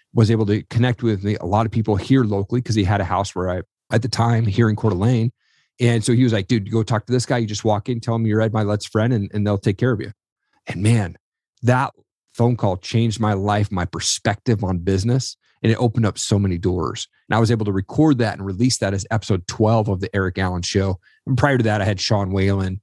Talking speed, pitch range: 260 wpm, 100-120 Hz